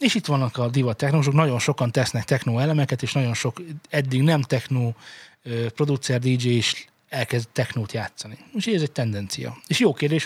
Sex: male